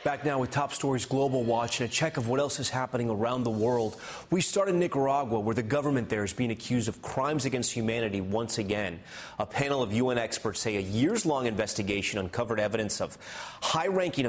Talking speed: 200 wpm